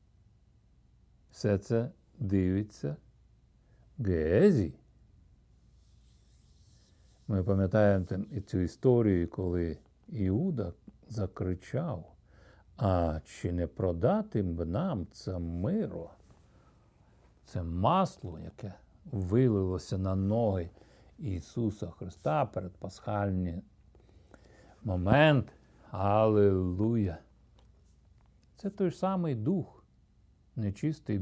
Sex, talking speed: male, 70 wpm